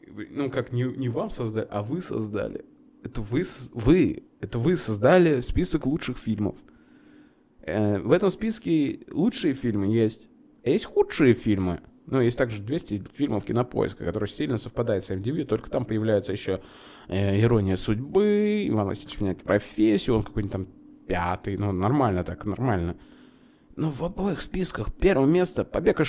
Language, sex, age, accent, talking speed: Russian, male, 20-39, native, 150 wpm